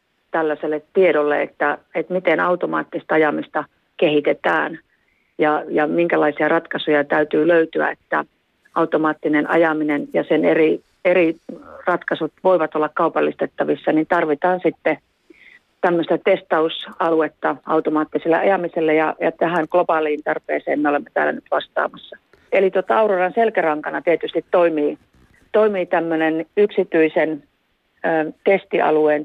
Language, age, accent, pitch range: Finnish, 40-59, native, 155-185 Hz